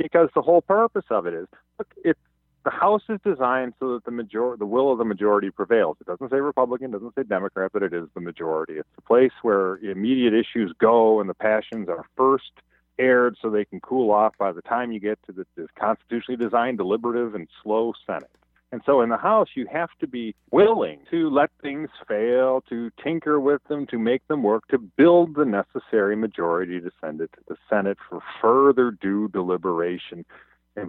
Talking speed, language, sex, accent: 205 wpm, English, male, American